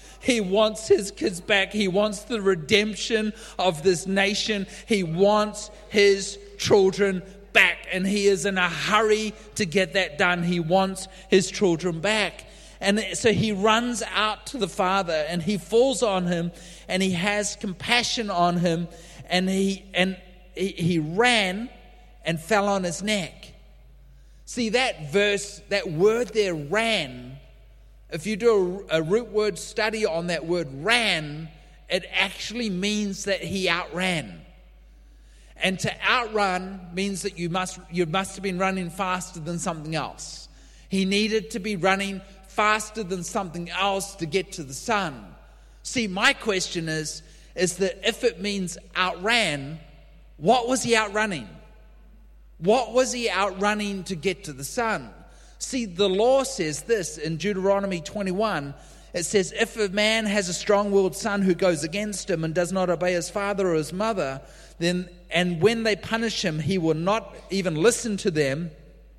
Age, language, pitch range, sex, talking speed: 30-49, English, 175-210 Hz, male, 155 wpm